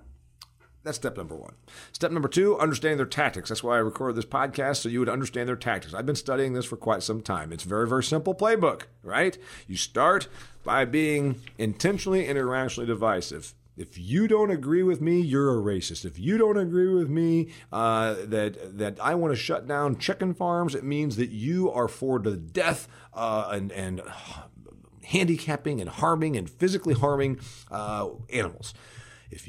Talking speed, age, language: 185 wpm, 40-59, English